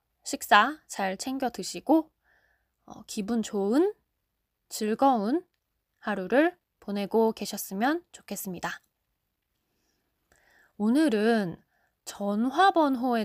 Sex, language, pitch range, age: female, Korean, 195-260 Hz, 20-39